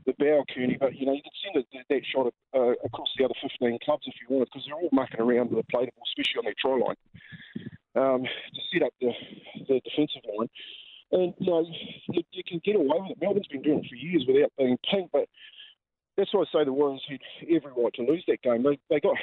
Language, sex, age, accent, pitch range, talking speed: English, male, 40-59, Australian, 130-200 Hz, 255 wpm